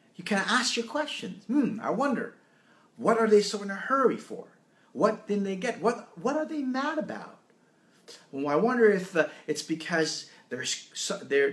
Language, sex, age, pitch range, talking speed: English, male, 30-49, 155-235 Hz, 180 wpm